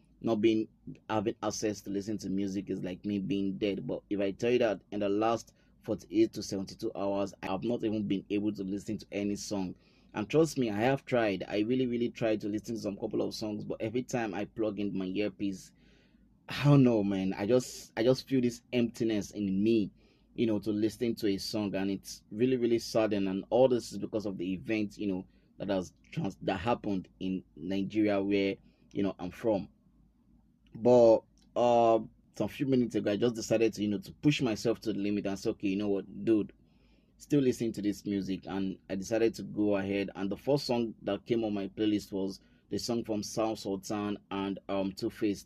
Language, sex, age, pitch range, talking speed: English, male, 20-39, 100-115 Hz, 215 wpm